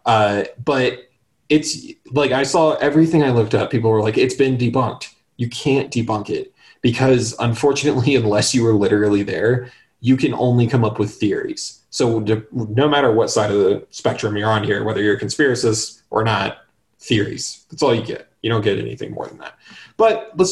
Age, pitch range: 20-39, 110-145 Hz